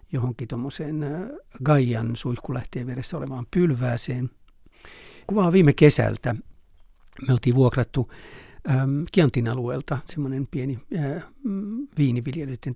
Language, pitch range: Finnish, 125-145 Hz